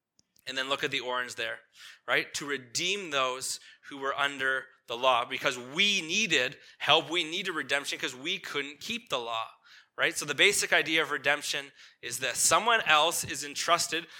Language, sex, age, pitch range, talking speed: English, male, 20-39, 125-160 Hz, 175 wpm